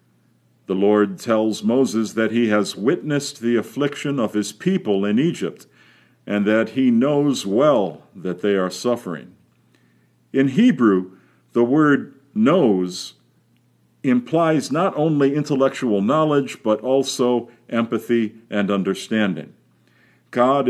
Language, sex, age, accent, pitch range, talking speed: English, male, 50-69, American, 95-125 Hz, 115 wpm